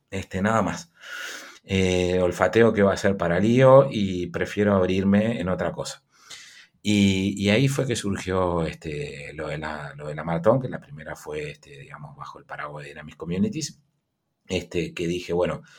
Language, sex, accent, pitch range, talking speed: Spanish, male, Argentinian, 85-105 Hz, 180 wpm